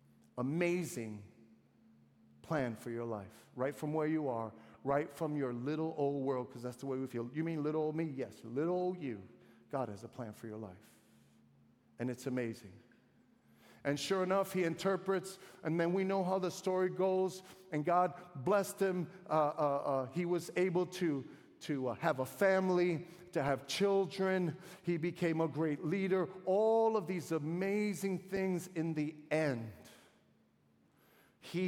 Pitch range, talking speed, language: 120-175 Hz, 165 wpm, English